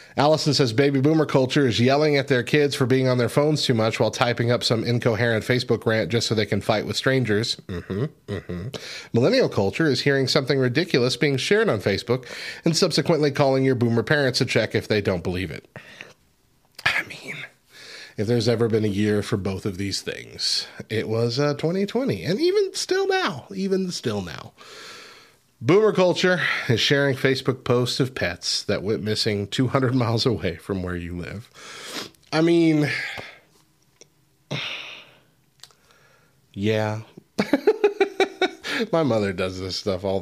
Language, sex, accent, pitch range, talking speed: English, male, American, 110-155 Hz, 160 wpm